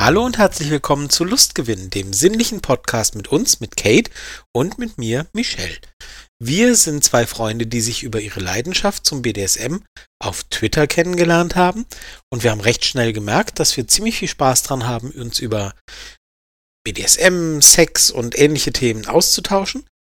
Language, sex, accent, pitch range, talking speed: German, male, German, 115-170 Hz, 160 wpm